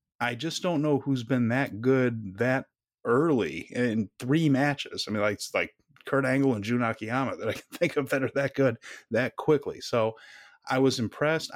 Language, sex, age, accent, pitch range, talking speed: English, male, 30-49, American, 115-135 Hz, 190 wpm